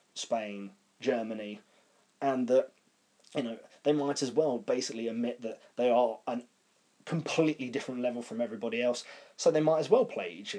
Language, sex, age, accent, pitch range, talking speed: English, male, 20-39, British, 120-155 Hz, 165 wpm